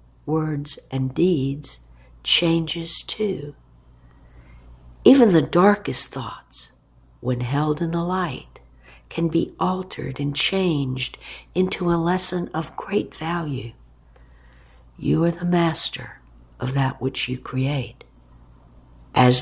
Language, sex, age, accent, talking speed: English, female, 60-79, American, 110 wpm